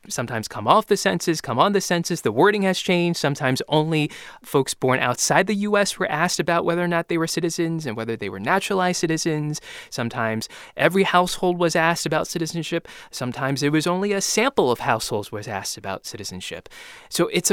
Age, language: 20-39, English